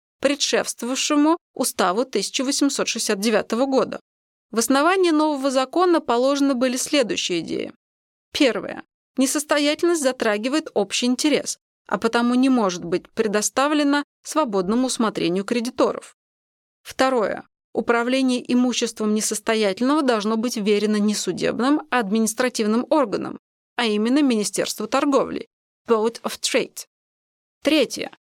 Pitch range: 220-280 Hz